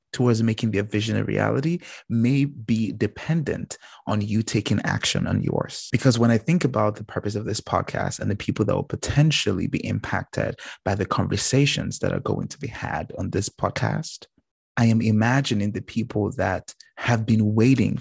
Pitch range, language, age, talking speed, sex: 105-125 Hz, English, 30-49, 180 wpm, male